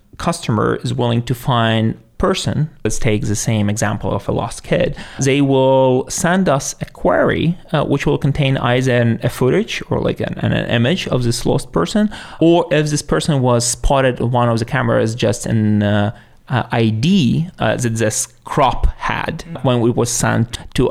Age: 30-49